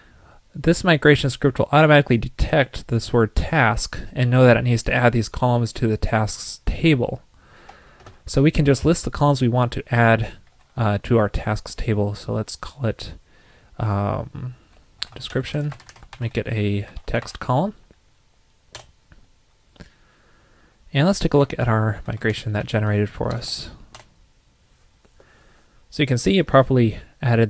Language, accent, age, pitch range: English, American, 20-39, 110-135 Hz